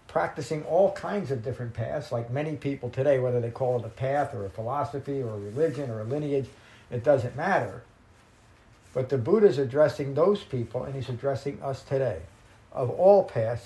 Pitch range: 115-145 Hz